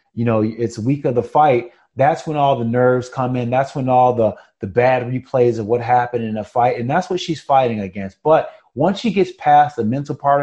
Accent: American